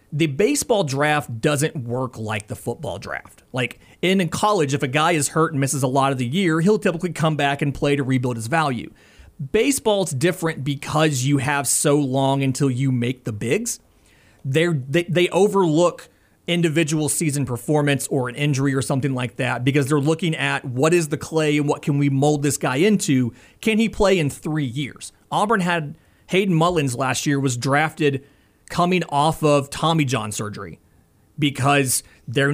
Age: 30-49